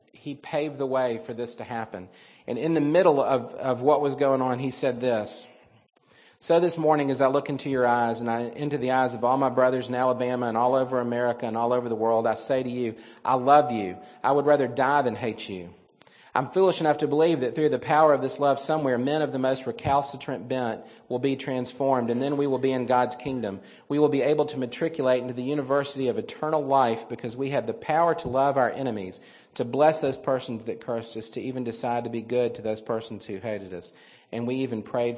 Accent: American